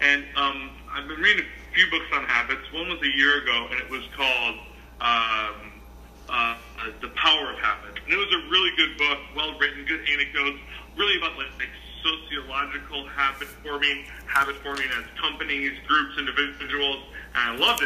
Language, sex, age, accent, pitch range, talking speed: English, male, 40-59, American, 110-155 Hz, 180 wpm